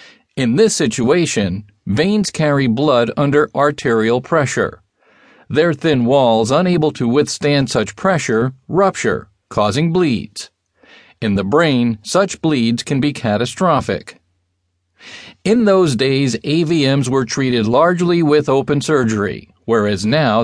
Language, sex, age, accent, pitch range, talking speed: English, male, 50-69, American, 115-155 Hz, 115 wpm